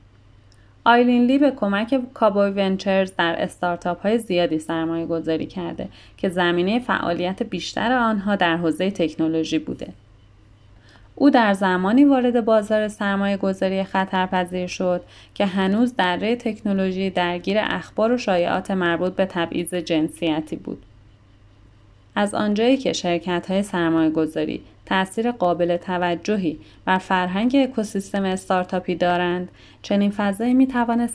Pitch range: 165-205 Hz